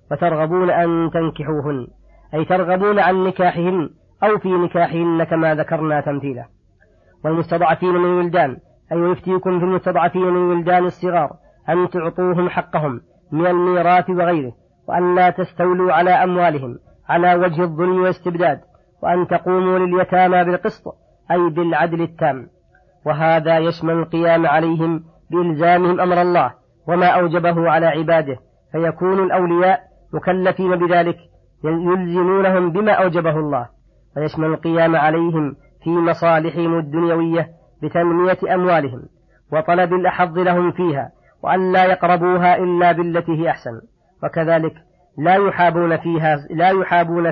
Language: Arabic